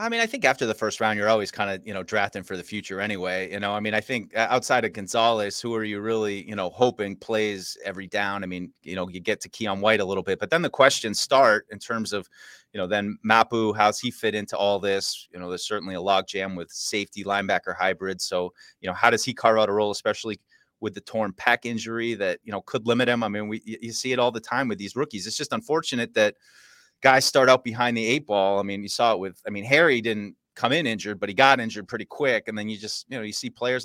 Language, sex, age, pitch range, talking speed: English, male, 30-49, 100-125 Hz, 270 wpm